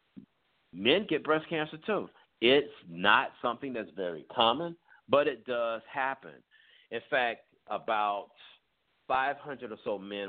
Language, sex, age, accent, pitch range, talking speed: English, male, 50-69, American, 100-155 Hz, 130 wpm